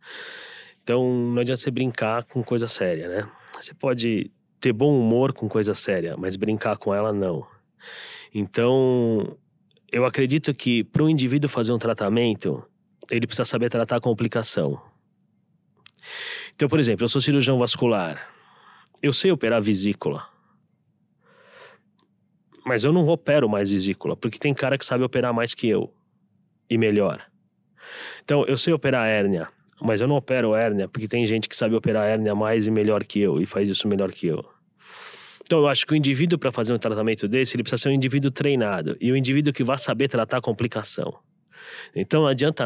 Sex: male